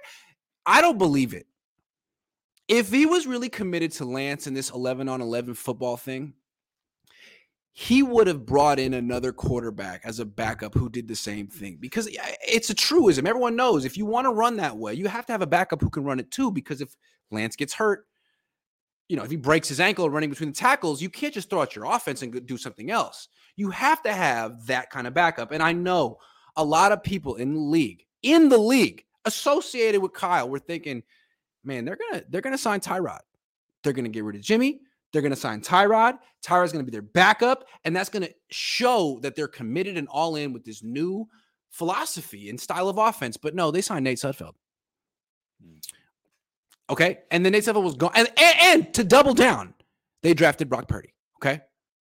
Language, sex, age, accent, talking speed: English, male, 30-49, American, 200 wpm